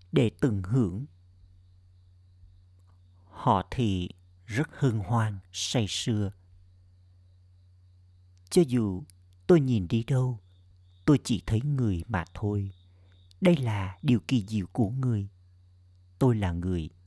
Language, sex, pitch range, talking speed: Vietnamese, male, 90-115 Hz, 115 wpm